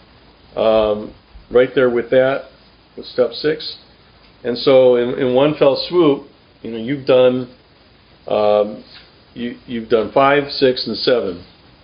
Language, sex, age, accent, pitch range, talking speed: English, male, 50-69, American, 105-145 Hz, 135 wpm